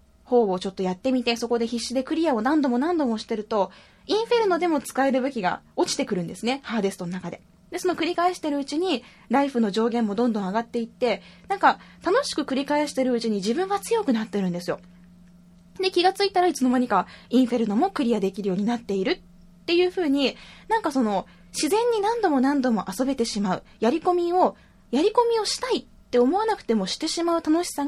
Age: 10-29